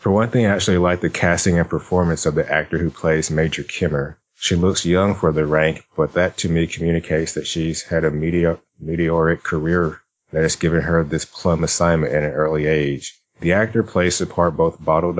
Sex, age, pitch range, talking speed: male, 30-49, 80-90 Hz, 210 wpm